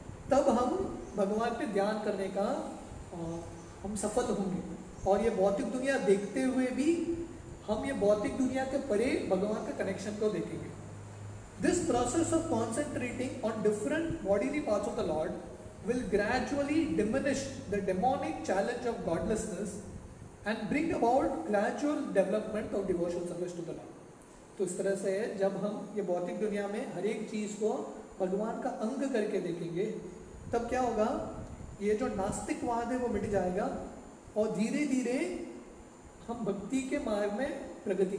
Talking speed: 140 wpm